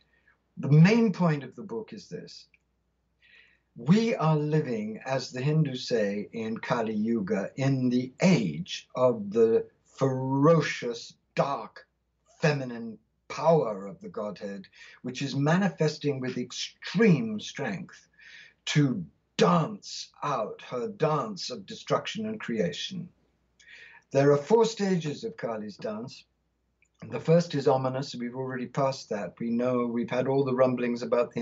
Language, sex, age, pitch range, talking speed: English, male, 60-79, 125-190 Hz, 130 wpm